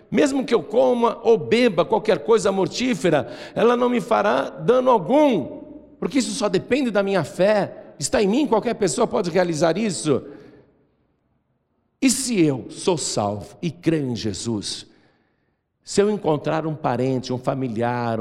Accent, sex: Brazilian, male